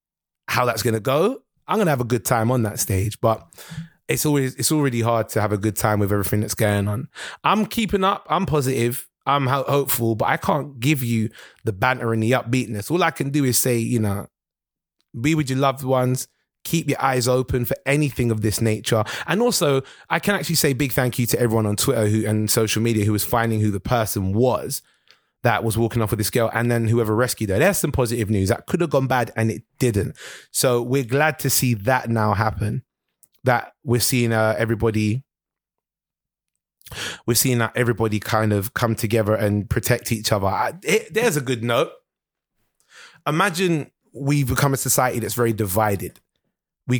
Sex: male